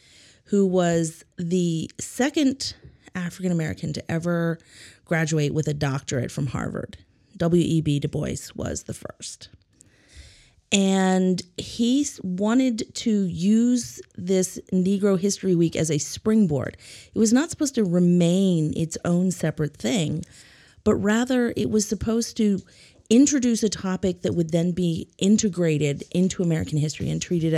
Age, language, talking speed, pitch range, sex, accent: 30-49, English, 135 wpm, 160-205 Hz, female, American